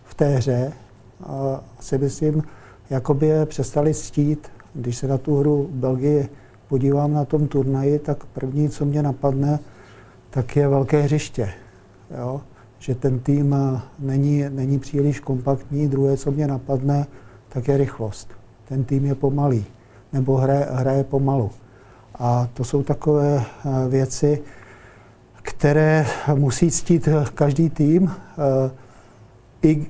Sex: male